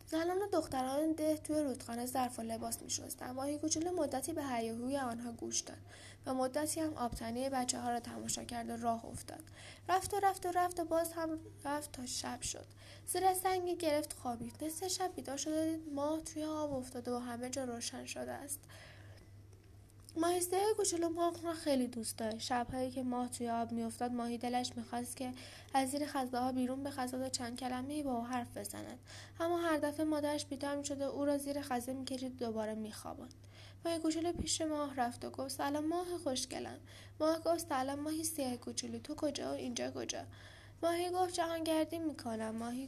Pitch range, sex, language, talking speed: 230-315 Hz, female, Persian, 175 wpm